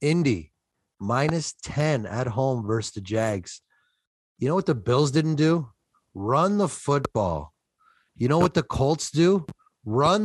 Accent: American